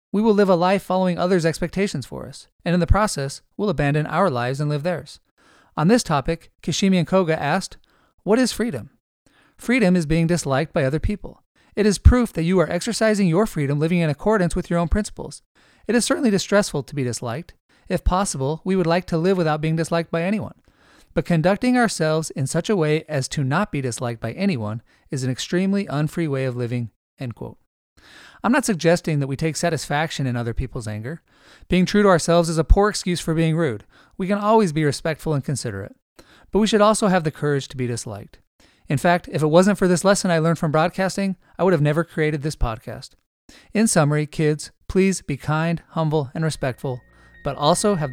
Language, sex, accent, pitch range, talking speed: English, male, American, 140-190 Hz, 205 wpm